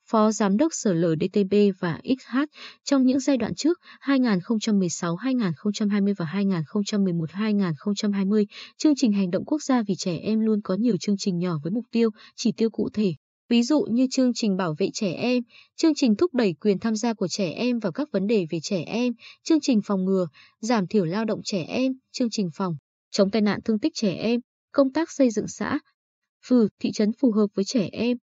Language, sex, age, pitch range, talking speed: Vietnamese, female, 20-39, 195-245 Hz, 205 wpm